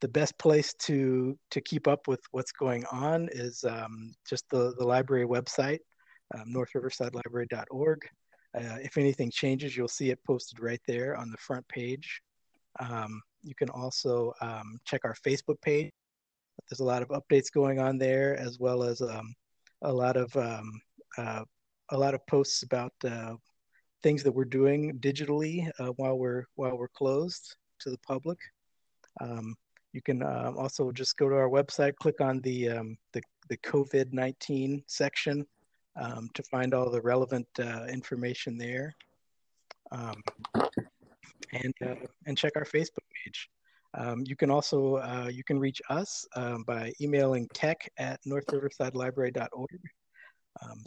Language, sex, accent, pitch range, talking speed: English, male, American, 125-140 Hz, 145 wpm